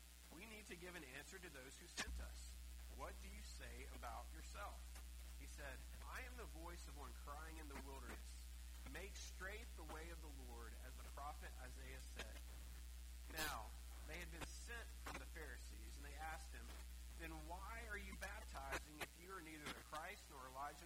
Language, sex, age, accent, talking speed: English, male, 40-59, American, 190 wpm